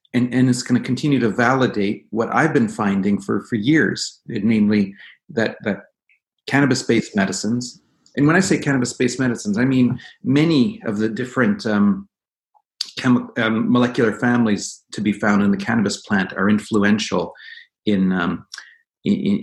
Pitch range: 105-135 Hz